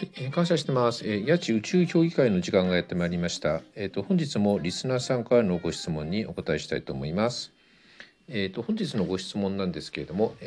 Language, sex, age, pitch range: Japanese, male, 50-69, 95-135 Hz